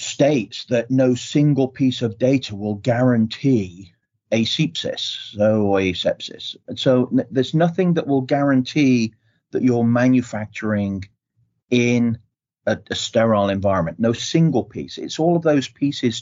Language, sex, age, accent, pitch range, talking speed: English, male, 40-59, British, 110-130 Hz, 135 wpm